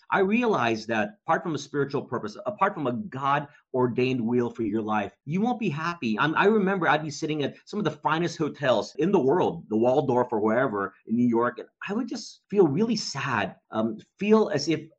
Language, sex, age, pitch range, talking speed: English, male, 30-49, 115-160 Hz, 210 wpm